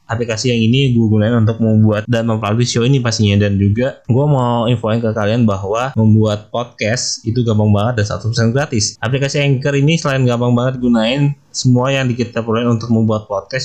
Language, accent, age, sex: Indonesian, native, 20-39, male